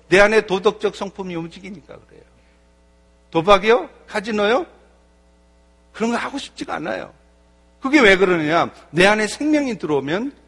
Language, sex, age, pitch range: Korean, male, 50-69, 170-230 Hz